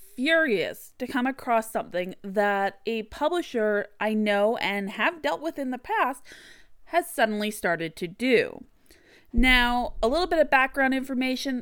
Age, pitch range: 30-49, 205-270 Hz